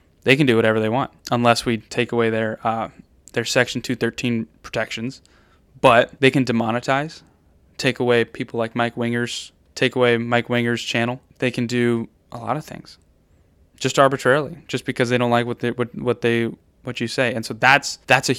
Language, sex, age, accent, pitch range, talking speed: English, male, 10-29, American, 115-130 Hz, 195 wpm